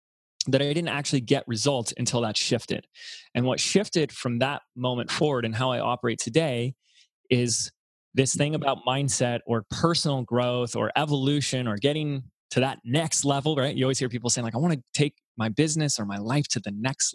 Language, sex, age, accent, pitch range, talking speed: English, male, 20-39, American, 120-145 Hz, 195 wpm